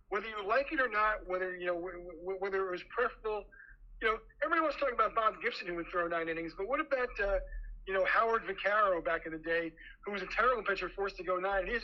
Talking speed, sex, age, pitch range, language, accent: 255 wpm, male, 40-59, 175-225 Hz, English, American